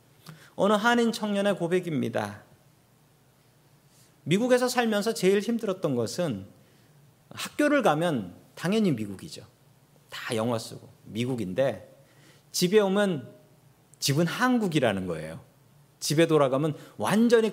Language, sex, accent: Korean, male, native